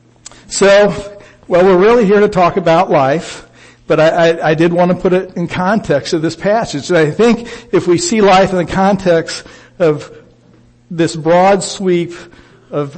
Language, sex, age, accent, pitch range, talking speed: English, male, 60-79, American, 140-175 Hz, 175 wpm